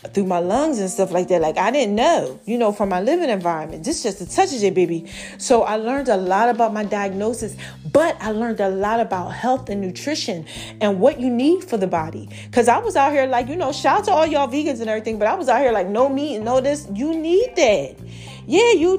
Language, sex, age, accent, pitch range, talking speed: English, female, 30-49, American, 195-275 Hz, 255 wpm